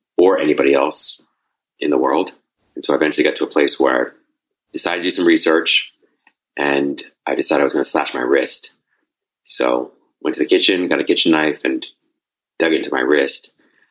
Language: English